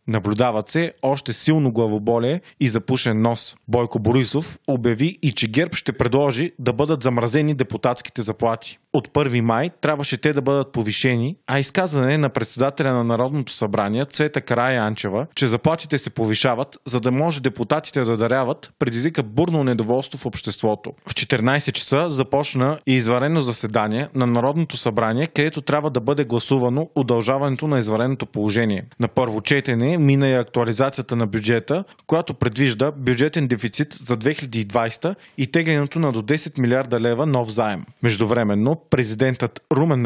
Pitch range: 120-145 Hz